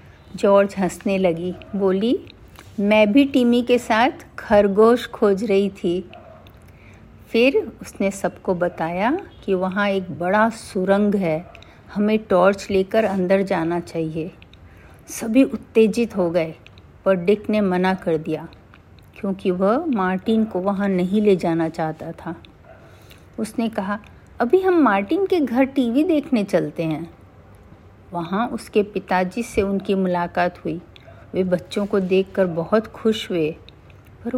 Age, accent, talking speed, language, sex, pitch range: 50-69, native, 130 wpm, Hindi, female, 175-225 Hz